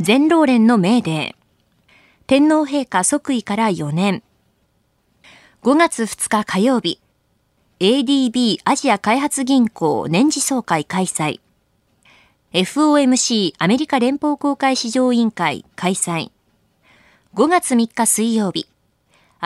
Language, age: Japanese, 20-39